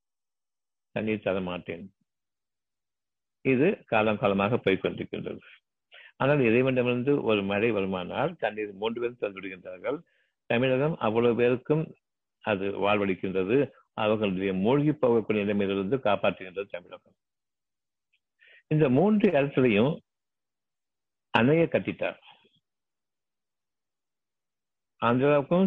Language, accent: Tamil, native